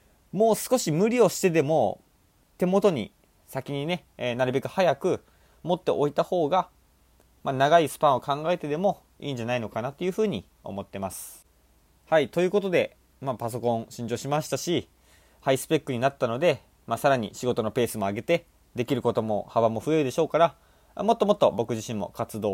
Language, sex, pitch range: Japanese, male, 105-155 Hz